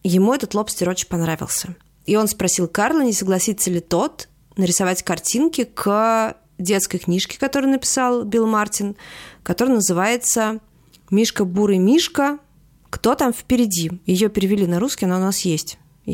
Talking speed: 140 wpm